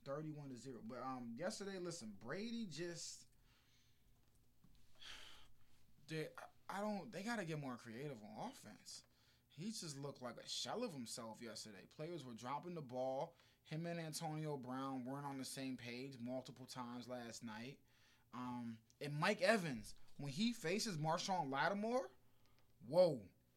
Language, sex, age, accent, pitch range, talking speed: English, male, 20-39, American, 120-160 Hz, 145 wpm